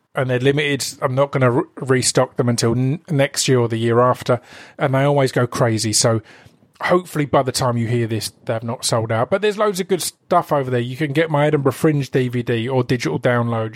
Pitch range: 125-155 Hz